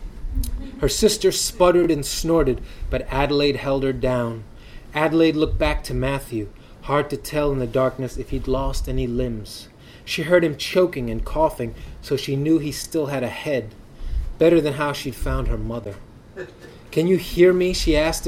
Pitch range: 125-155 Hz